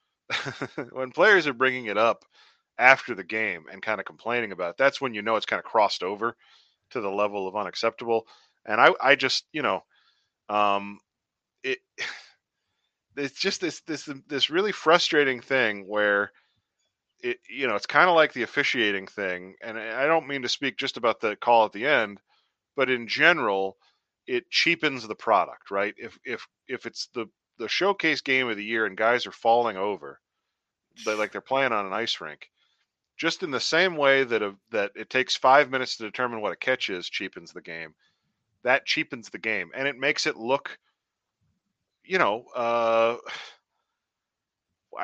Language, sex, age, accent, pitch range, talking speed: English, male, 30-49, American, 110-145 Hz, 175 wpm